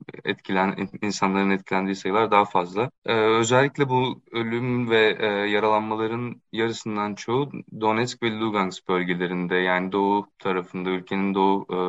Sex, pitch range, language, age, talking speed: male, 95-115 Hz, Turkish, 20-39, 125 wpm